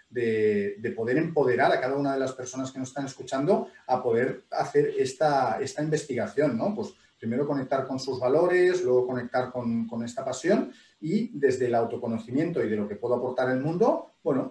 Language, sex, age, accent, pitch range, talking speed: Spanish, male, 40-59, Spanish, 130-190 Hz, 190 wpm